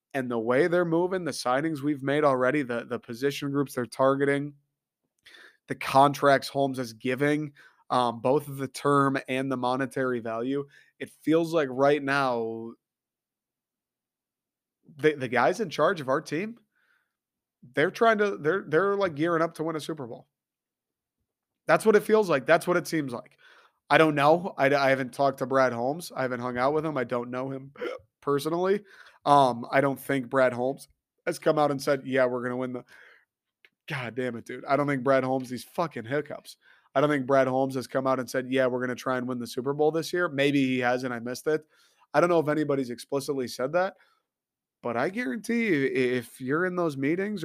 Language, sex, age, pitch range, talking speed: English, male, 30-49, 130-155 Hz, 205 wpm